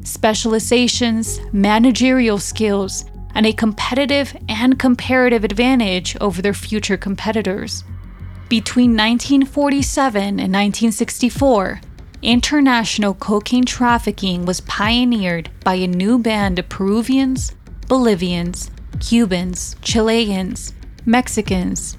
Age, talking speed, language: 20-39, 85 wpm, English